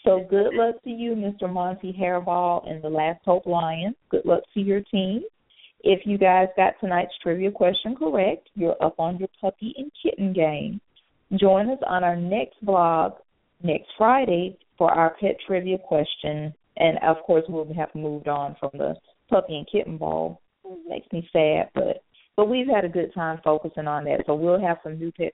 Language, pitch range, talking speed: English, 160-195 Hz, 185 wpm